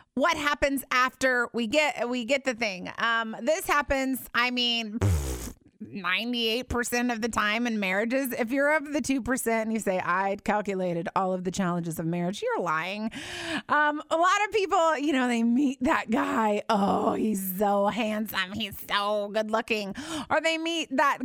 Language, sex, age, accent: English, female, 30-49, American